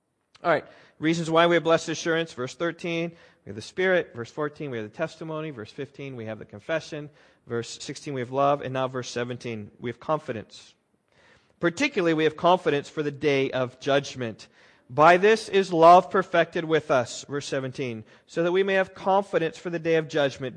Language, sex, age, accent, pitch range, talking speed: English, male, 40-59, American, 140-185 Hz, 195 wpm